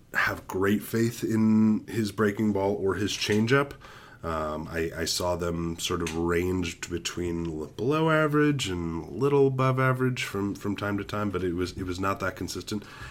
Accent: American